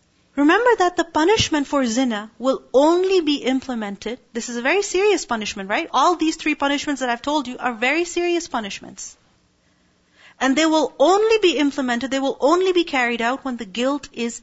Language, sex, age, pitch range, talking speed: English, female, 40-59, 220-295 Hz, 185 wpm